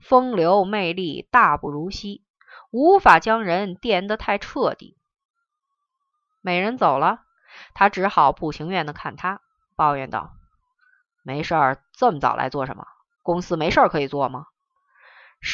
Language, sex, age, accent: Chinese, female, 20-39, native